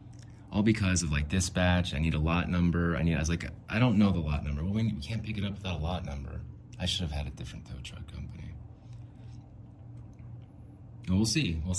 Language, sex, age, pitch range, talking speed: English, male, 30-49, 85-115 Hz, 225 wpm